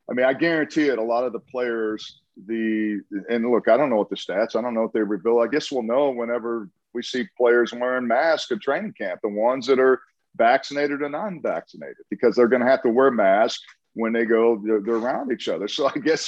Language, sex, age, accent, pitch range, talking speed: English, male, 40-59, American, 110-140 Hz, 235 wpm